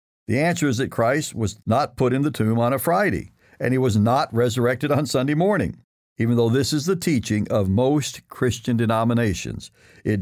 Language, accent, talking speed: English, American, 195 wpm